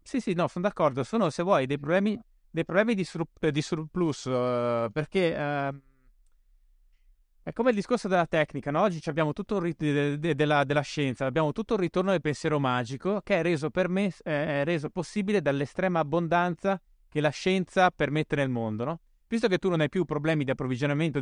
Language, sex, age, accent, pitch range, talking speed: Italian, male, 20-39, native, 130-175 Hz, 200 wpm